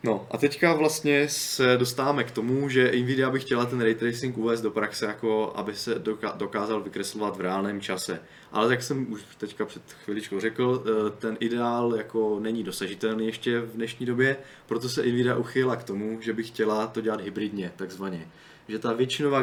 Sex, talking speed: male, 180 wpm